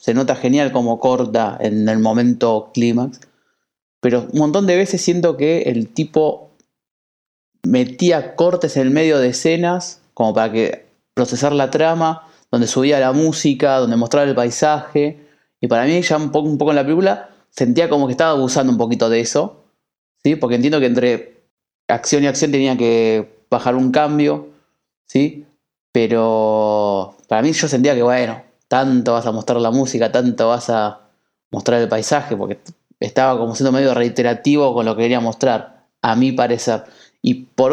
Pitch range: 115-145 Hz